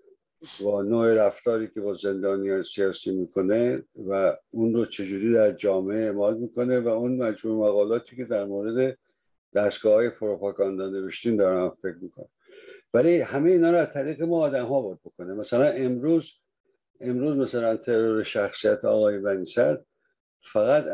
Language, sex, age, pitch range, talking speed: Persian, male, 60-79, 110-150 Hz, 145 wpm